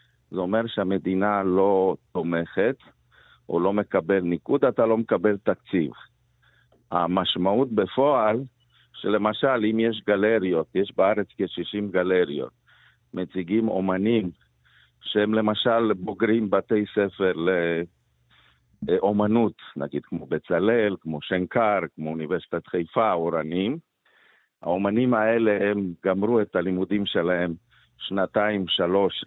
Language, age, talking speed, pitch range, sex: Hebrew, 50-69, 100 wpm, 95-115 Hz, male